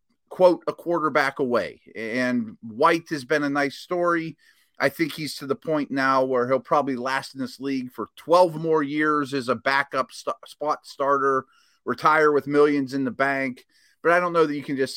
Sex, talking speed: male, 195 wpm